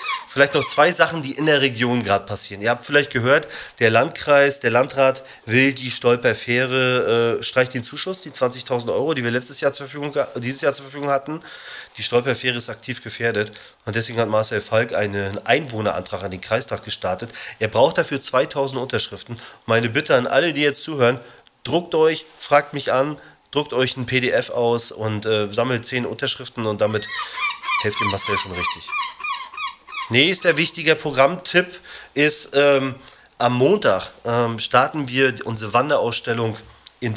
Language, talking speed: German, 165 wpm